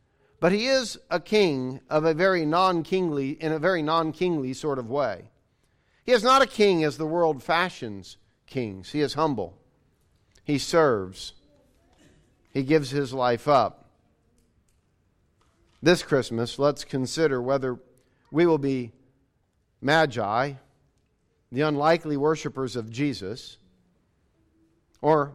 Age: 50-69